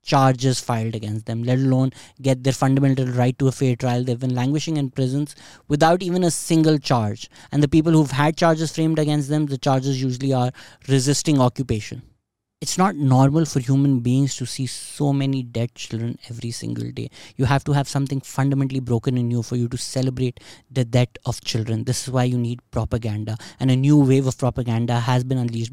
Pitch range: 120-140 Hz